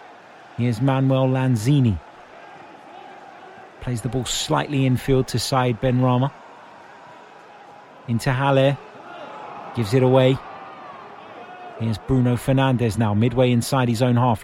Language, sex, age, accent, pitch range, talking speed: English, male, 30-49, British, 125-155 Hz, 105 wpm